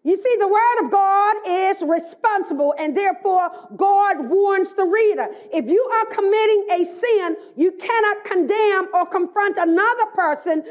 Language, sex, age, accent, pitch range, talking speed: English, female, 40-59, American, 340-420 Hz, 150 wpm